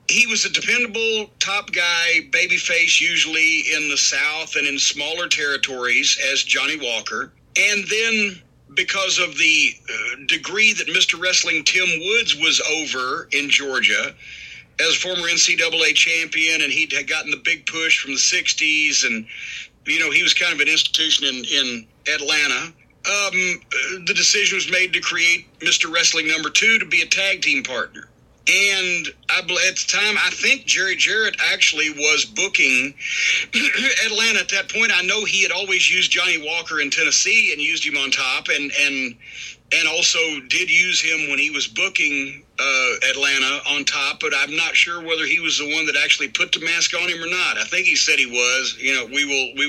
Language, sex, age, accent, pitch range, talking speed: English, male, 50-69, American, 150-195 Hz, 180 wpm